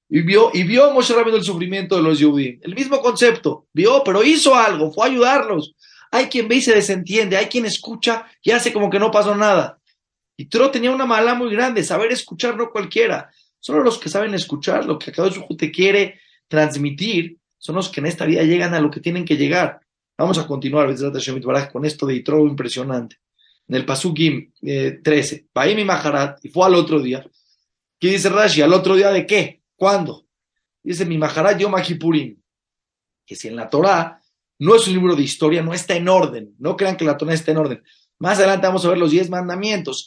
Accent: Mexican